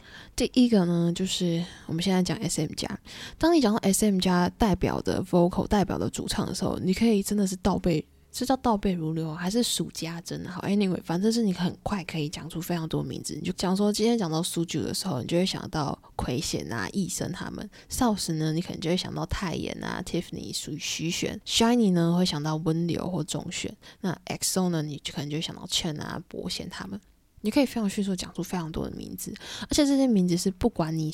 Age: 20-39